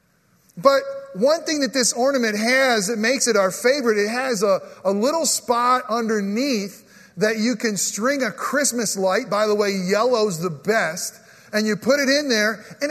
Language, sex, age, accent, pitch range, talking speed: English, male, 40-59, American, 195-240 Hz, 180 wpm